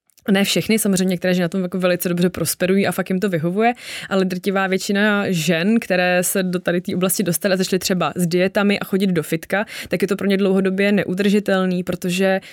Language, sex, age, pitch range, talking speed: Czech, female, 20-39, 180-200 Hz, 205 wpm